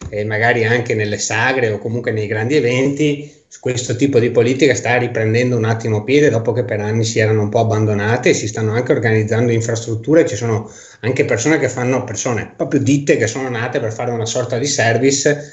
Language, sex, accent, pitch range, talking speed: Italian, male, native, 110-130 Hz, 195 wpm